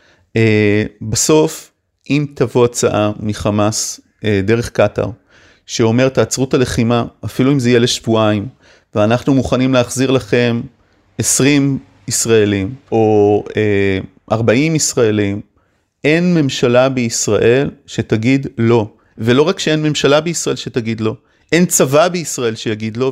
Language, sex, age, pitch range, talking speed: Hebrew, male, 30-49, 105-135 Hz, 115 wpm